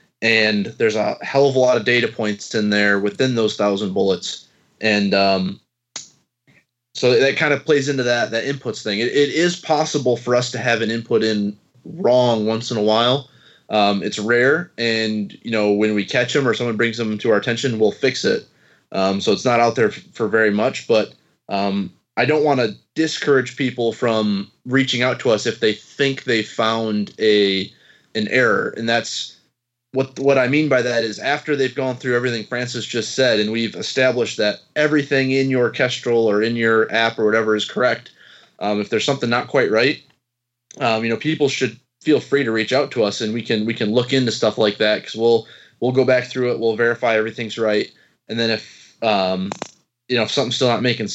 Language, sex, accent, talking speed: English, male, American, 210 wpm